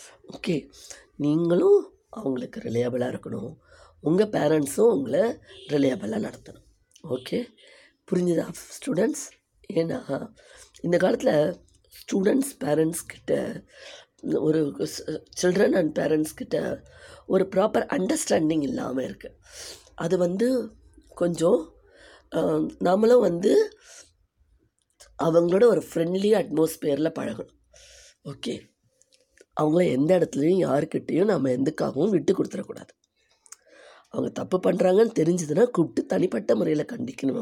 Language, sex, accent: Tamil, female, native